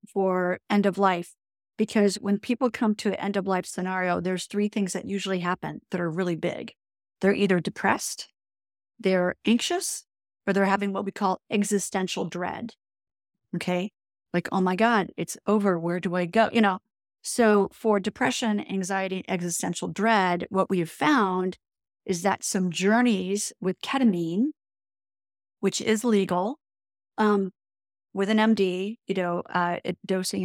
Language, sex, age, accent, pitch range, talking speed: English, female, 40-59, American, 180-215 Hz, 150 wpm